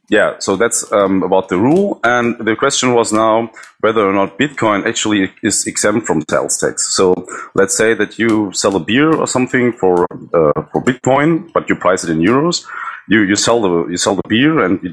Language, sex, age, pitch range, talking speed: English, male, 40-59, 85-115 Hz, 210 wpm